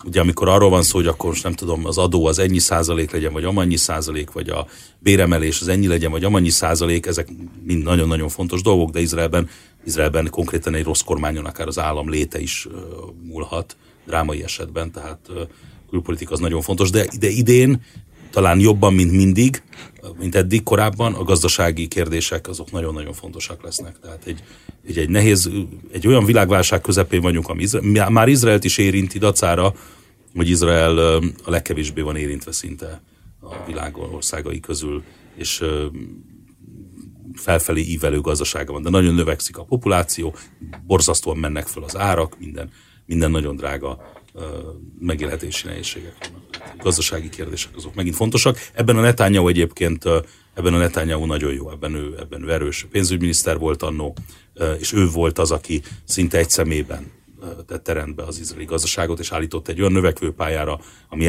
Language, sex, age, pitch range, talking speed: Hungarian, male, 30-49, 80-95 Hz, 155 wpm